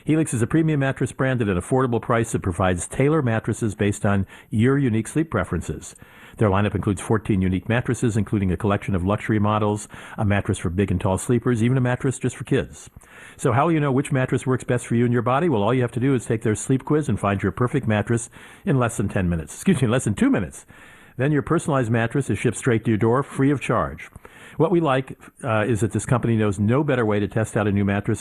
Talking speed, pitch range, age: 250 wpm, 100-130 Hz, 50-69